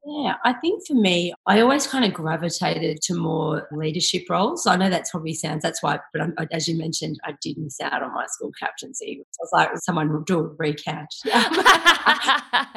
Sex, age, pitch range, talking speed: female, 30-49, 155-195 Hz, 200 wpm